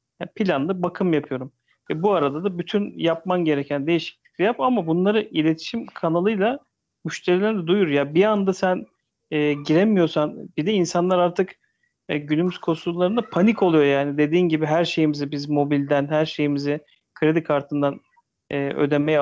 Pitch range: 150-185 Hz